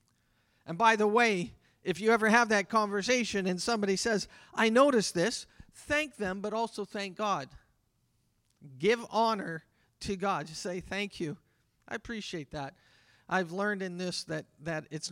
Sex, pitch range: male, 155-230 Hz